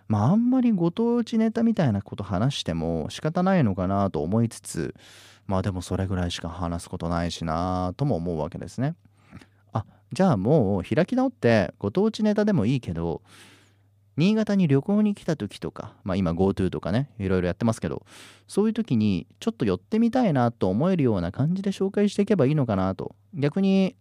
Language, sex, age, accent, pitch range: Japanese, male, 30-49, native, 95-140 Hz